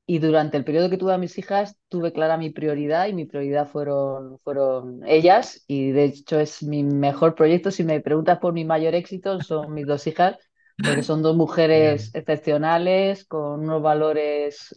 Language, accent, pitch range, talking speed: Spanish, Spanish, 145-175 Hz, 185 wpm